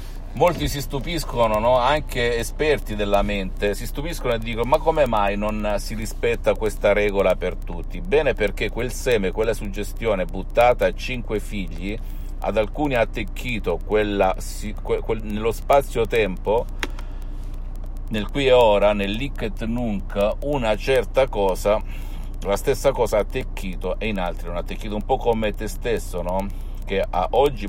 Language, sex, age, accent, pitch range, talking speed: Italian, male, 50-69, native, 90-115 Hz, 160 wpm